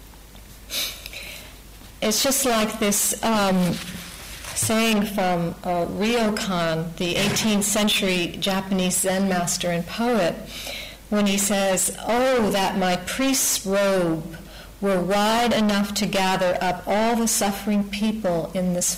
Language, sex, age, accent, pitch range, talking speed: English, female, 50-69, American, 180-215 Hz, 115 wpm